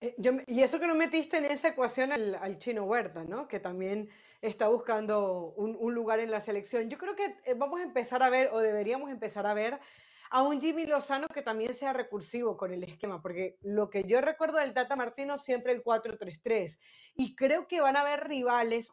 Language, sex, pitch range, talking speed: Spanish, female, 215-265 Hz, 210 wpm